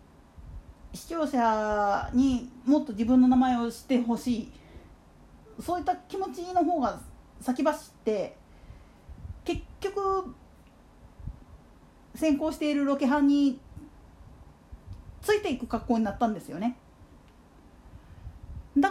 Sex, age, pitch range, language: female, 40-59, 190-295 Hz, Japanese